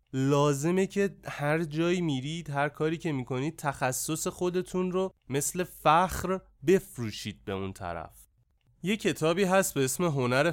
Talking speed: 135 wpm